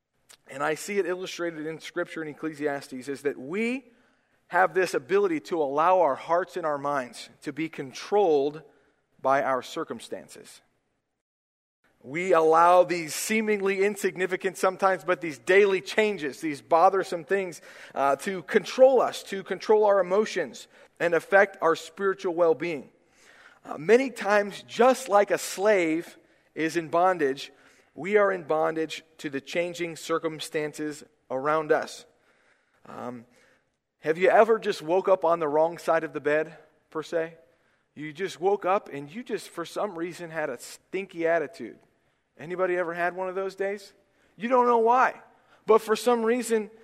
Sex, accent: male, American